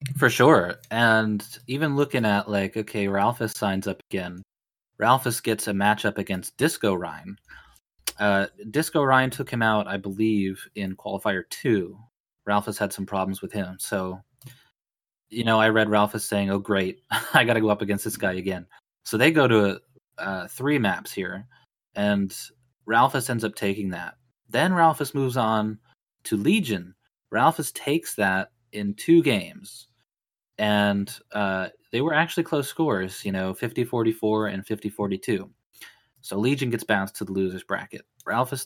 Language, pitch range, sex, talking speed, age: English, 100-125 Hz, male, 160 wpm, 20-39